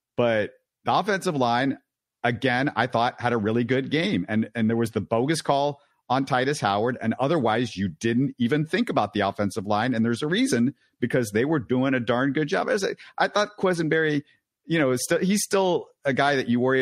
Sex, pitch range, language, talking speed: male, 110-140 Hz, English, 210 wpm